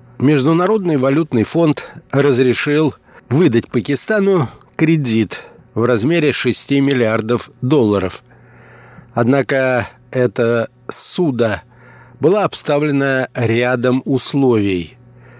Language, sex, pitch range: Russian, male, 115-145 Hz